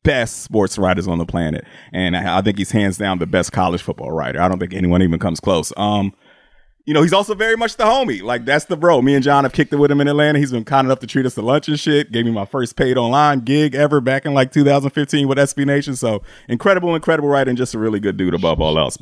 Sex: male